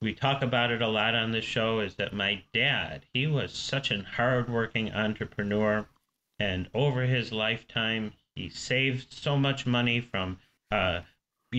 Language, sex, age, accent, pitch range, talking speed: English, male, 40-59, American, 105-135 Hz, 155 wpm